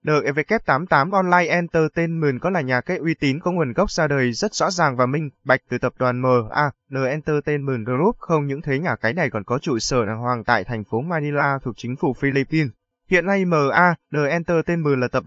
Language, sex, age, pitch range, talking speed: Vietnamese, male, 20-39, 130-170 Hz, 210 wpm